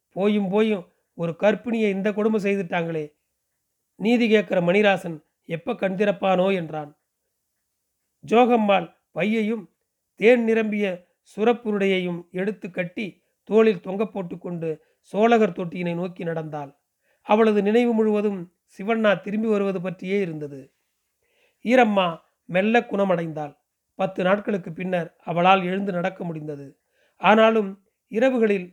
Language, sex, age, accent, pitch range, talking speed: Tamil, male, 40-59, native, 175-220 Hz, 100 wpm